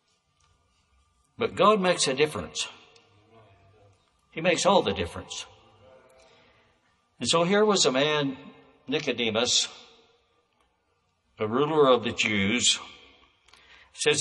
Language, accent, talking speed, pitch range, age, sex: English, American, 95 wpm, 95-130 Hz, 60-79, male